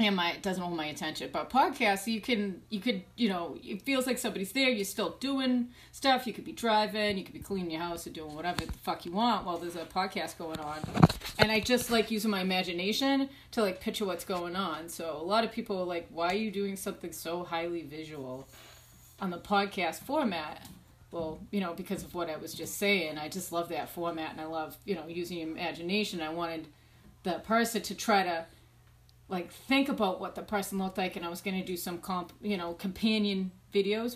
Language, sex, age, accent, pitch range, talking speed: English, female, 30-49, American, 170-205 Hz, 220 wpm